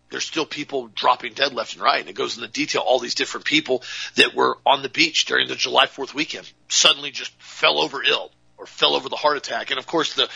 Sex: male